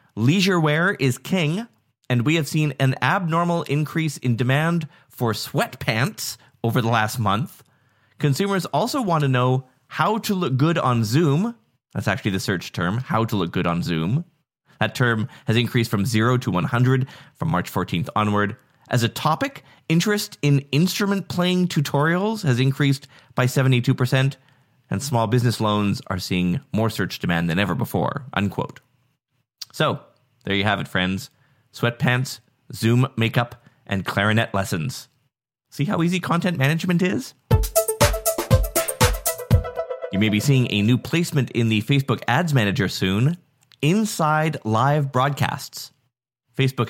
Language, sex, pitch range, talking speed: English, male, 115-155 Hz, 145 wpm